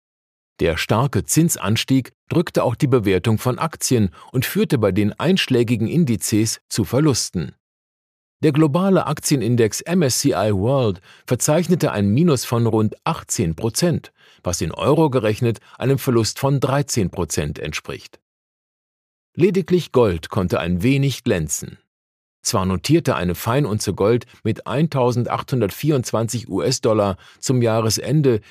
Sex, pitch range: male, 105-150 Hz